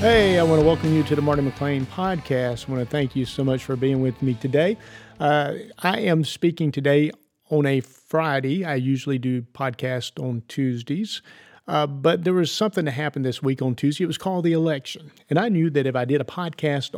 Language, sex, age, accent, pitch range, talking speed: English, male, 40-59, American, 135-165 Hz, 220 wpm